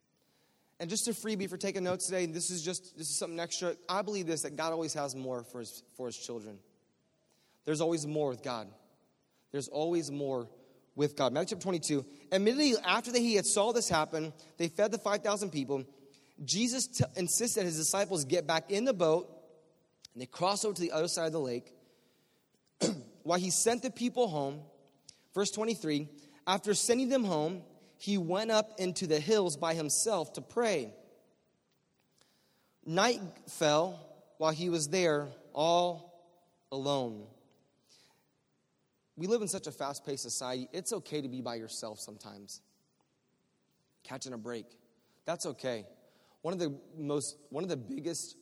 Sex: male